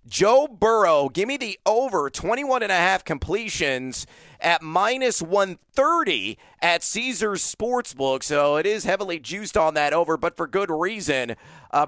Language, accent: English, American